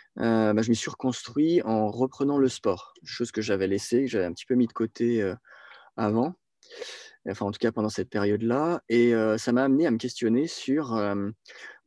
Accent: French